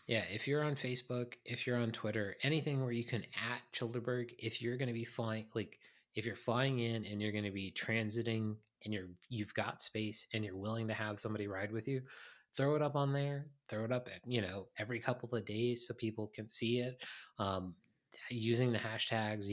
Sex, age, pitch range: male, 20-39, 105-120 Hz